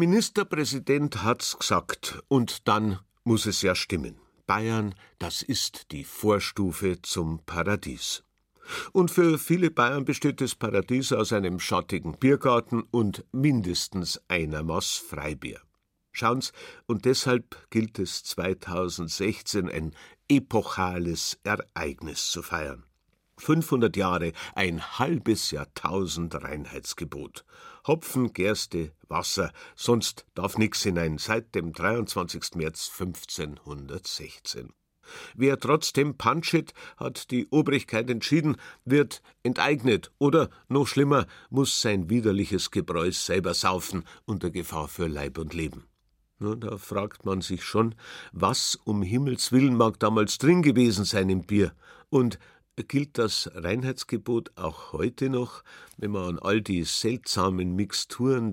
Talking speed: 120 wpm